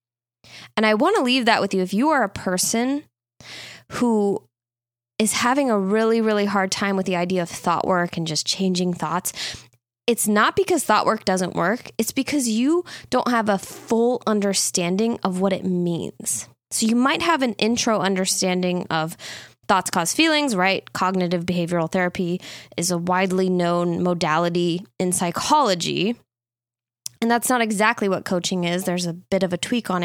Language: English